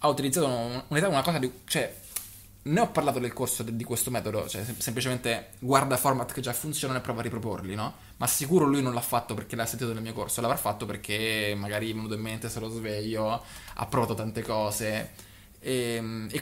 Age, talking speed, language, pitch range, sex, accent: 20-39, 210 wpm, Italian, 110-140 Hz, male, native